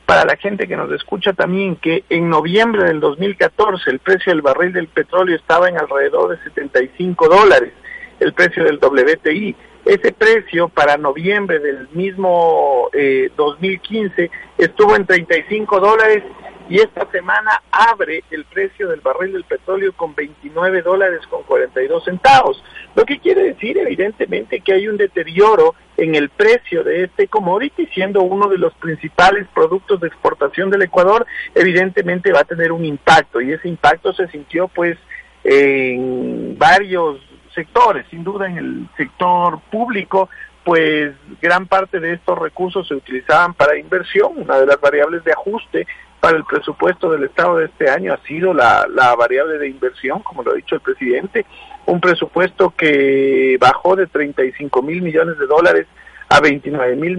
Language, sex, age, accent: Spanish, male, 50-69, Mexican